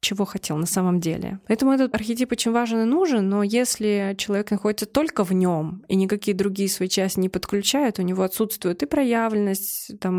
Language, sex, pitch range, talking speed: Russian, female, 185-220 Hz, 190 wpm